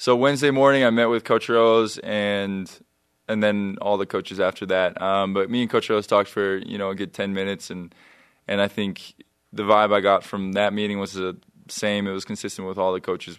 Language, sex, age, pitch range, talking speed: English, male, 20-39, 90-100 Hz, 230 wpm